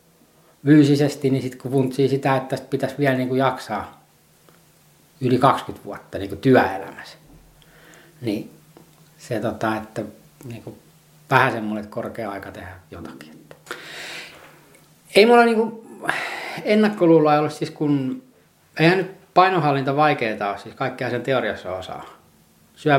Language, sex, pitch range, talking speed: Finnish, male, 110-150 Hz, 115 wpm